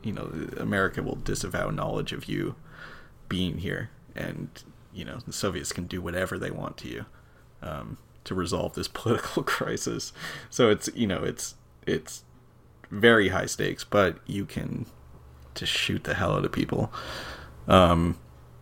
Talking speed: 155 wpm